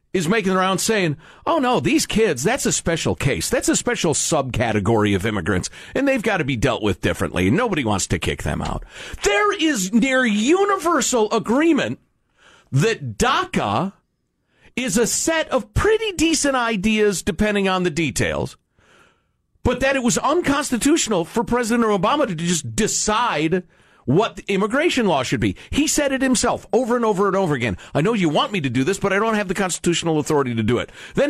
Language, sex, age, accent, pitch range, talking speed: English, male, 50-69, American, 155-245 Hz, 180 wpm